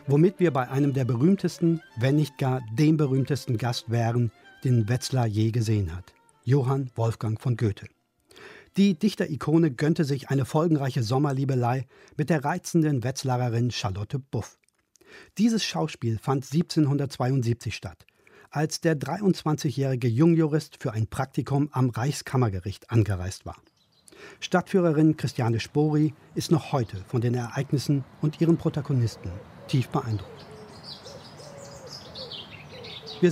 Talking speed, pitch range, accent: 120 wpm, 120-155 Hz, German